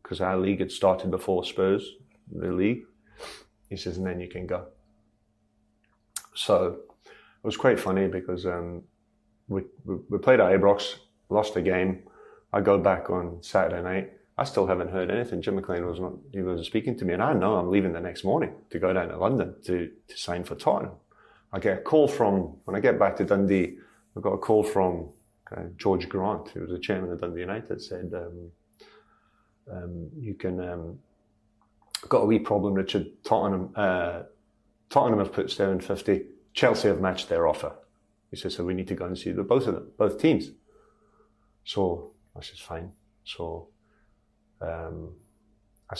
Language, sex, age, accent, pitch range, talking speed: English, male, 30-49, British, 90-105 Hz, 180 wpm